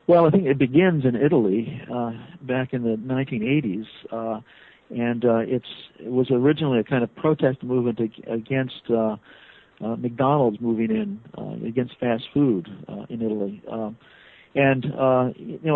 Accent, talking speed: American, 155 wpm